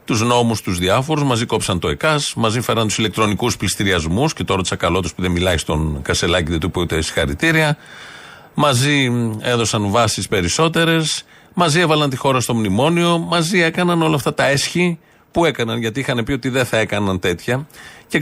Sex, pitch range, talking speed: male, 115-160 Hz, 180 wpm